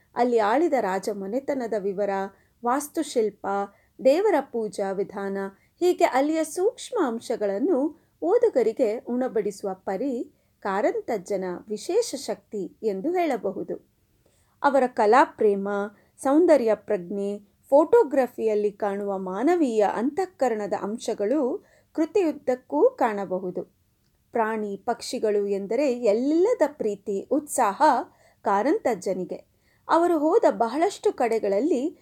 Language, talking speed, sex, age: Kannada, 80 wpm, female, 30-49